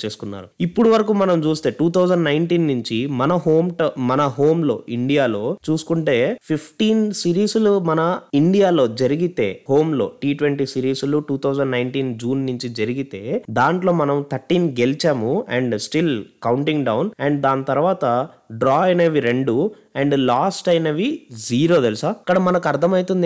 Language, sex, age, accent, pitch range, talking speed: Telugu, male, 20-39, native, 125-170 Hz, 120 wpm